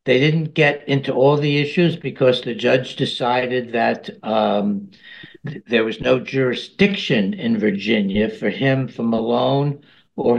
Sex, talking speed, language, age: male, 140 wpm, English, 60-79